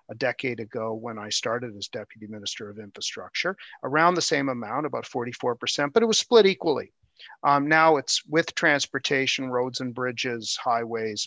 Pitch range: 115-140 Hz